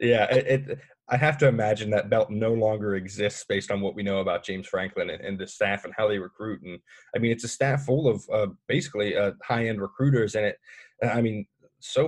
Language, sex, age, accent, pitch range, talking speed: English, male, 20-39, American, 100-130 Hz, 230 wpm